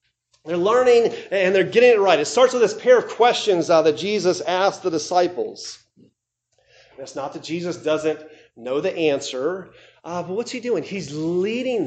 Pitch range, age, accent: 175-245 Hz, 40-59, American